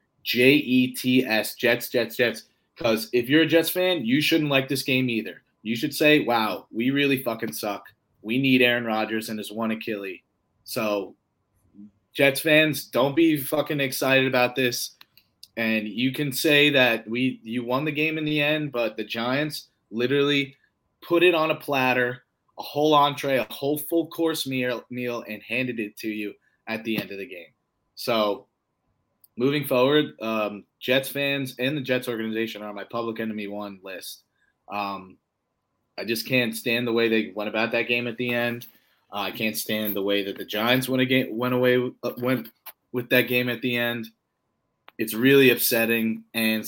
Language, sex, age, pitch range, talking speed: English, male, 30-49, 110-140 Hz, 175 wpm